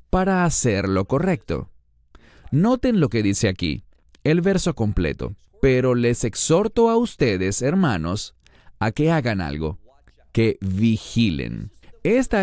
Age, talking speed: 30-49, 120 wpm